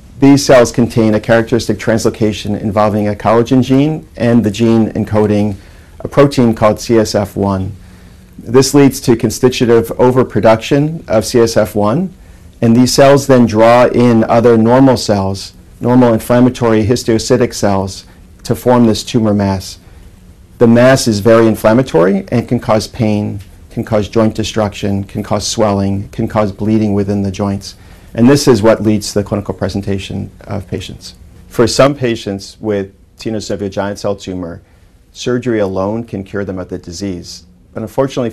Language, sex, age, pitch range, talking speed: English, male, 40-59, 95-115 Hz, 145 wpm